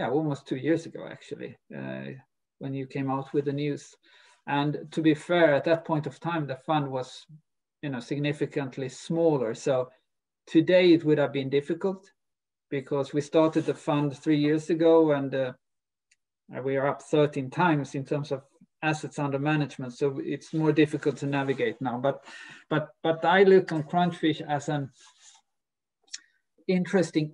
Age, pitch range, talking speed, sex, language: 50-69, 140-165 Hz, 160 wpm, male, English